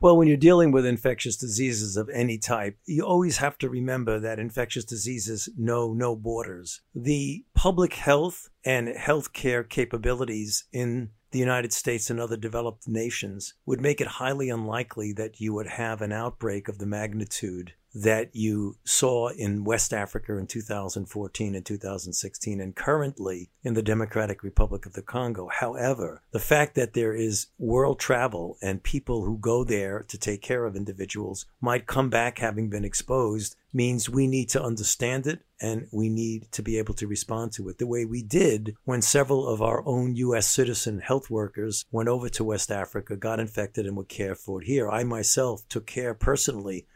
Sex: male